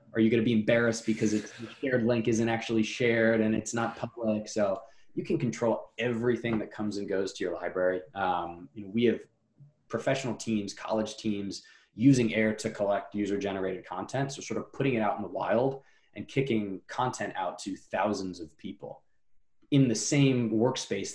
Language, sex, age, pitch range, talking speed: English, male, 20-39, 100-115 Hz, 180 wpm